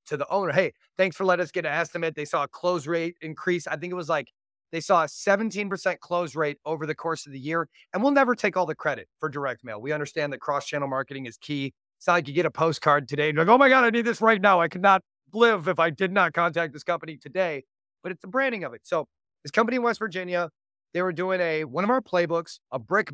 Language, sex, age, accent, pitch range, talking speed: English, male, 30-49, American, 155-195 Hz, 270 wpm